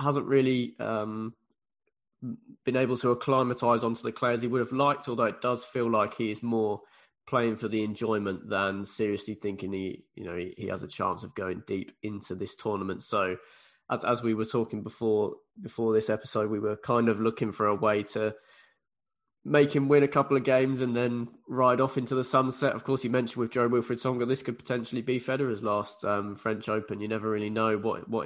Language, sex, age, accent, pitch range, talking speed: English, male, 20-39, British, 110-125 Hz, 210 wpm